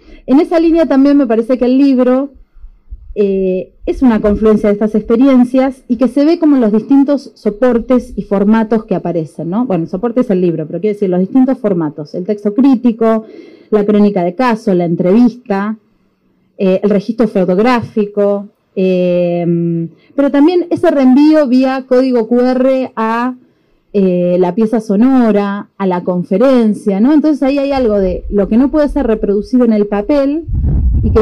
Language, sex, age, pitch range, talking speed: Spanish, female, 30-49, 195-260 Hz, 165 wpm